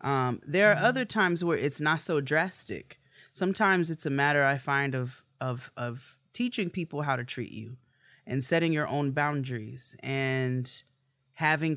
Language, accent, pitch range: English, American, 125-150 Hz